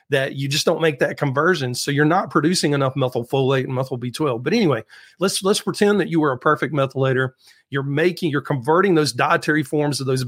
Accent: American